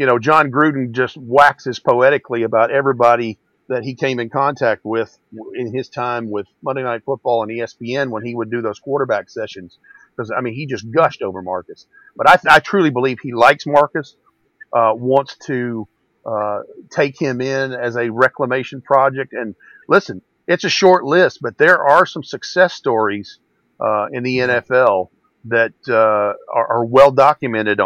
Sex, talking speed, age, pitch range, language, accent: male, 170 wpm, 50-69, 115-135 Hz, English, American